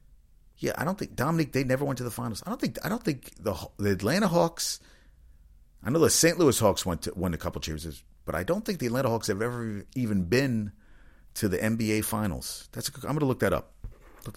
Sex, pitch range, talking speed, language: male, 85-115 Hz, 235 wpm, English